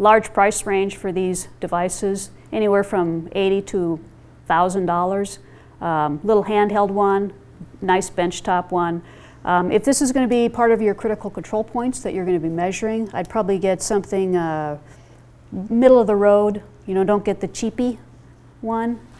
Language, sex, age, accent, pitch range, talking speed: English, female, 40-59, American, 170-215 Hz, 170 wpm